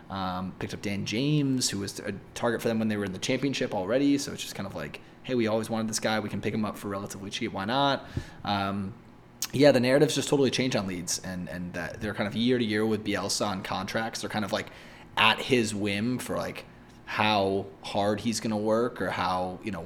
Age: 20-39